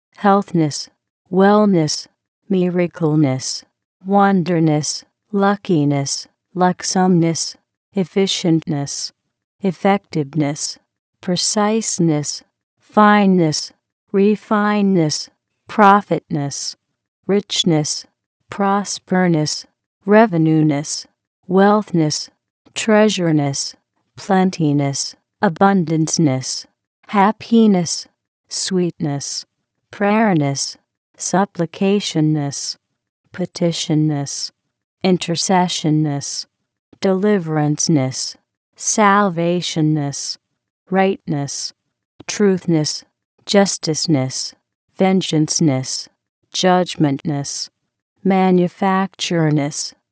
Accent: American